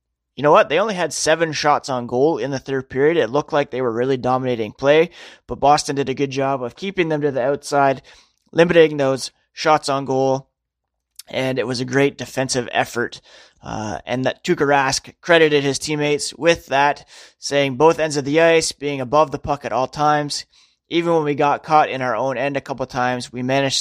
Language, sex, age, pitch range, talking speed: English, male, 30-49, 125-150 Hz, 210 wpm